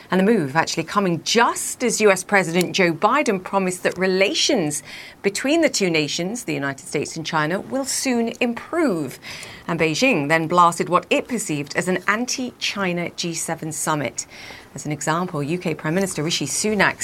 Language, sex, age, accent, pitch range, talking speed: English, female, 40-59, British, 160-205 Hz, 160 wpm